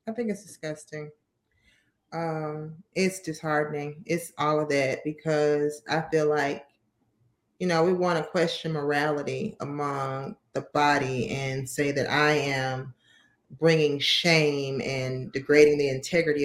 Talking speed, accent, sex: 130 wpm, American, female